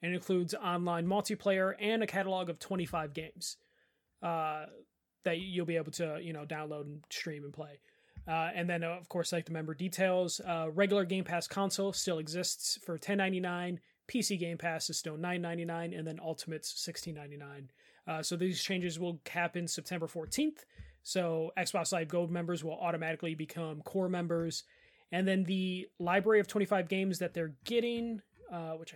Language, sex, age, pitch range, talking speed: English, male, 30-49, 160-190 Hz, 185 wpm